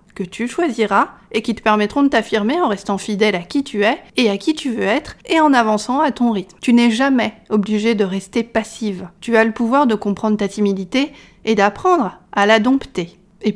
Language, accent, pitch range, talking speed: French, French, 205-260 Hz, 215 wpm